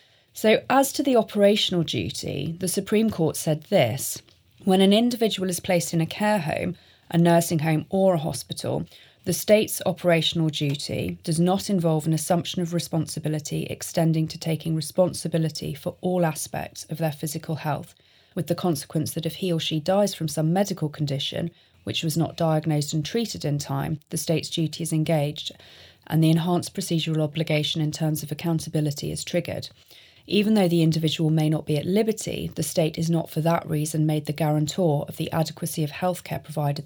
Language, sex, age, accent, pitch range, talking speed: English, female, 30-49, British, 150-175 Hz, 180 wpm